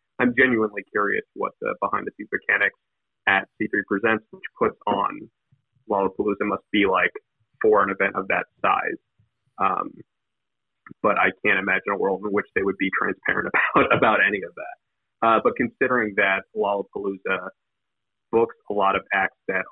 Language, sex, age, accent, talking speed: English, male, 30-49, American, 165 wpm